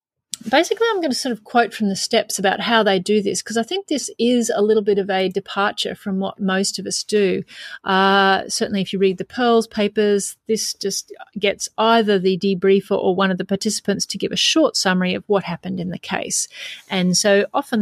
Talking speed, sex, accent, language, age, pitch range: 220 wpm, female, Australian, English, 30-49, 190-225 Hz